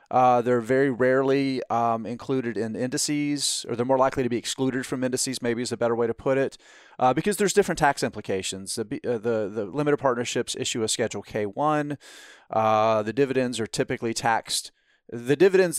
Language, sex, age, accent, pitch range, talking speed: English, male, 30-49, American, 115-140 Hz, 190 wpm